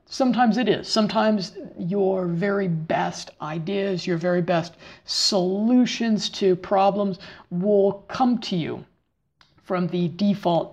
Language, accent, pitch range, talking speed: English, American, 170-210 Hz, 115 wpm